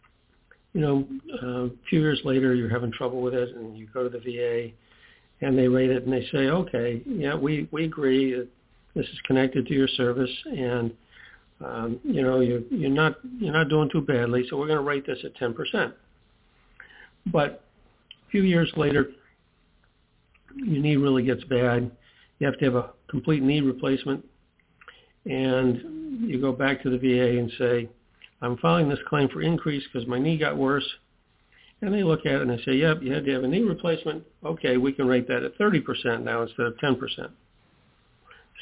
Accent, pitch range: American, 120-140 Hz